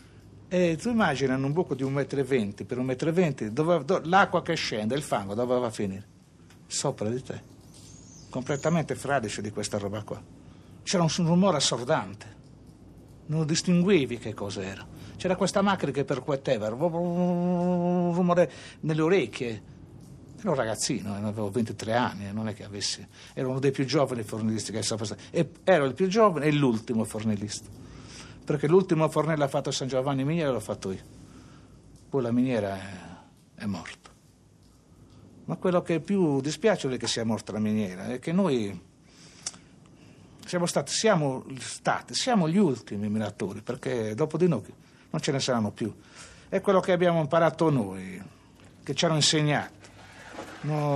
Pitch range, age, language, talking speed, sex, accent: 110-165 Hz, 60-79, Italian, 170 wpm, male, native